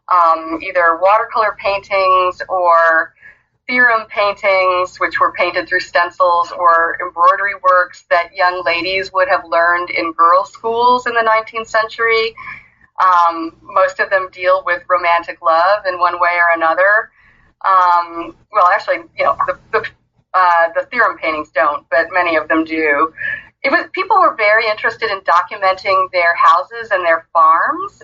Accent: American